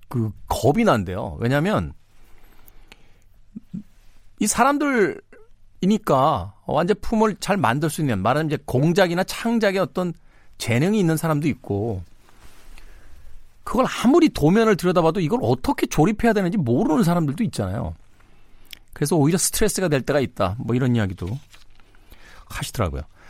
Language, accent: Korean, native